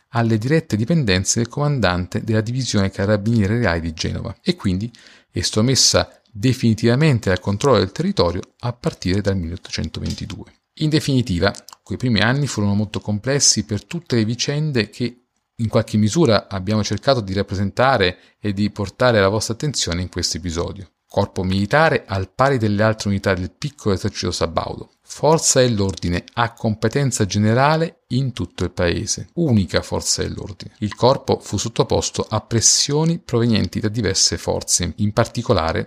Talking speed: 150 wpm